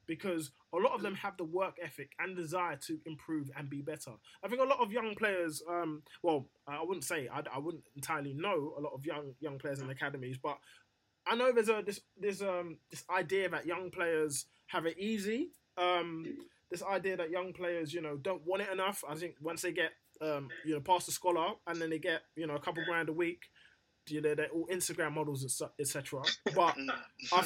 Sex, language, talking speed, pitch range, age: male, English, 220 wpm, 150-195 Hz, 20-39